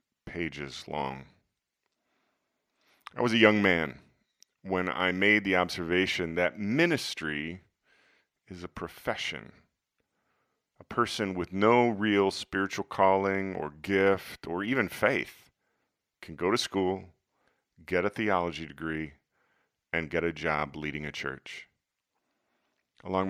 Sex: male